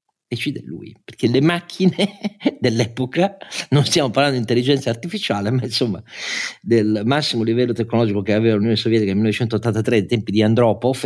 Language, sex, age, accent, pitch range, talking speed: Italian, male, 40-59, native, 100-130 Hz, 155 wpm